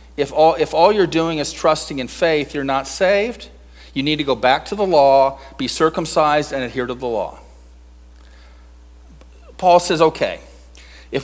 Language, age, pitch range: English, 40-59, 135-190 Hz